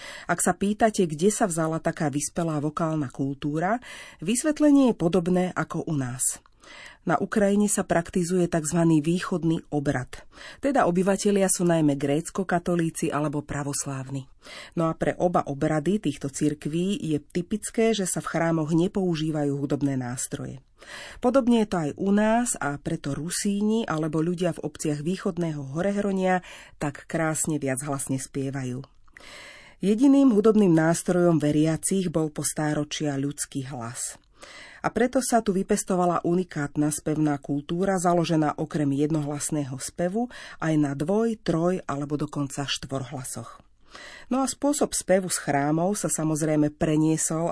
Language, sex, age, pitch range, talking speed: Slovak, female, 40-59, 145-190 Hz, 130 wpm